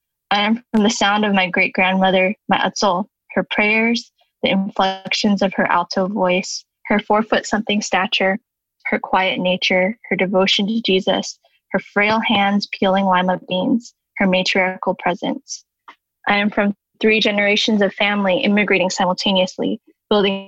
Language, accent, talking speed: English, American, 140 wpm